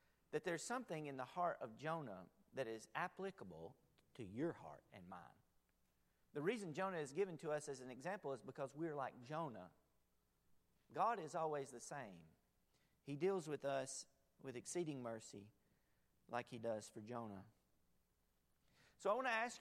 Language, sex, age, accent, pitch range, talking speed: English, male, 40-59, American, 110-155 Hz, 160 wpm